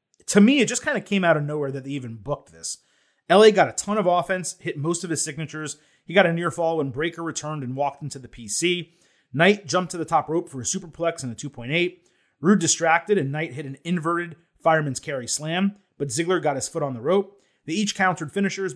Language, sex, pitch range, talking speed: English, male, 140-190 Hz, 235 wpm